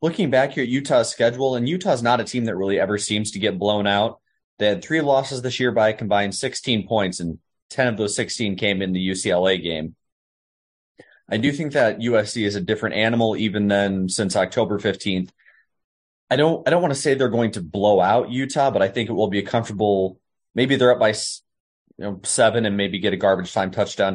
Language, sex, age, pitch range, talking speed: English, male, 30-49, 95-120 Hz, 210 wpm